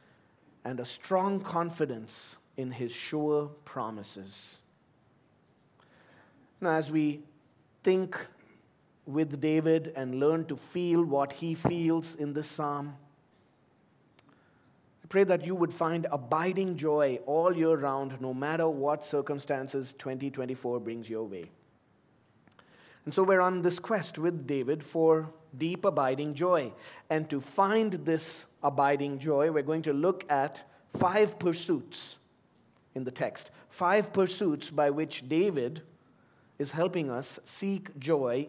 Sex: male